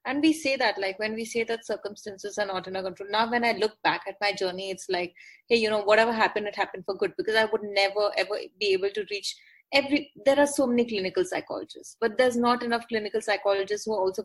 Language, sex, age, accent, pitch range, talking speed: English, female, 20-39, Indian, 210-265 Hz, 245 wpm